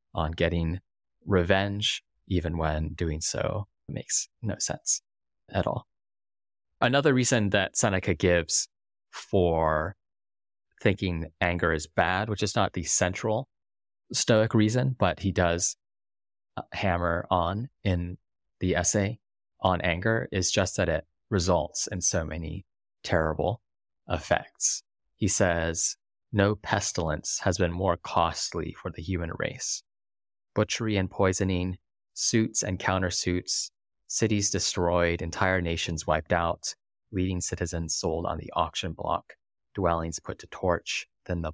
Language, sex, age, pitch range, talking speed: English, male, 20-39, 85-100 Hz, 125 wpm